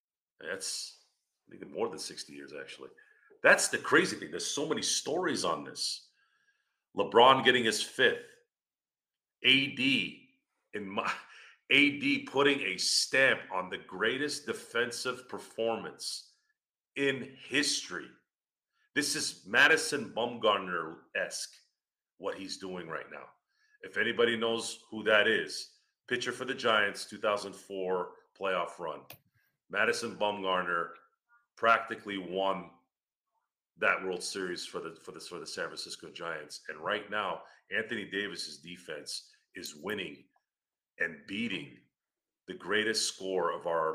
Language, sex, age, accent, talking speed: English, male, 40-59, American, 125 wpm